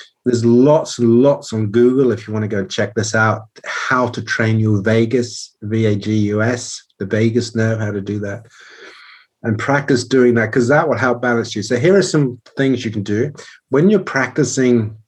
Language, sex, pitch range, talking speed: English, male, 105-120 Hz, 195 wpm